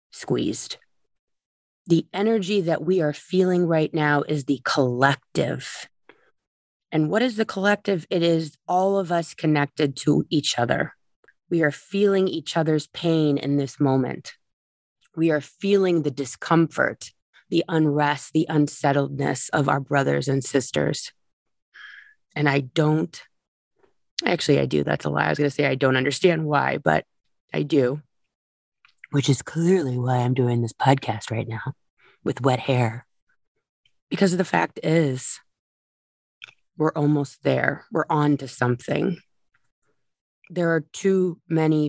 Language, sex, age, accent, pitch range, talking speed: English, female, 30-49, American, 135-165 Hz, 140 wpm